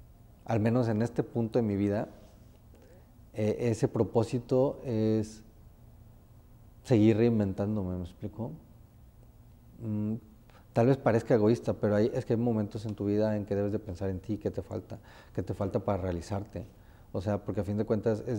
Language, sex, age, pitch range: Spanish, male, 30-49, 100-115 Hz